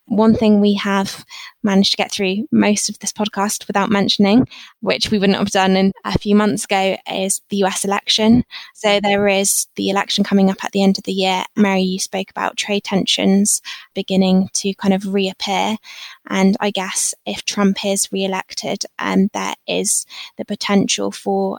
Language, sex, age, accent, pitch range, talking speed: English, female, 20-39, British, 195-210 Hz, 185 wpm